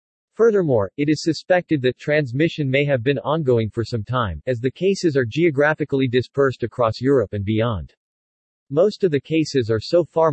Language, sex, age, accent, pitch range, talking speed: English, male, 40-59, American, 115-155 Hz, 175 wpm